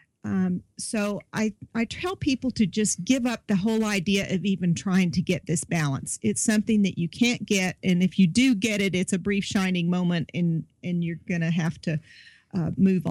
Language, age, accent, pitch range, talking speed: English, 50-69, American, 185-225 Hz, 210 wpm